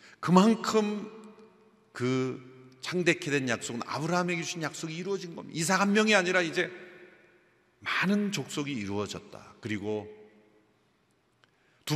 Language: Korean